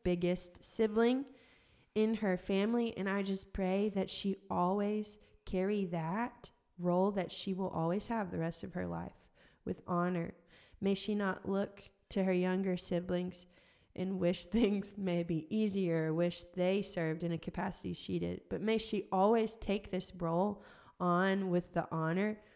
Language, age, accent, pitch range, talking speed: English, 20-39, American, 175-205 Hz, 160 wpm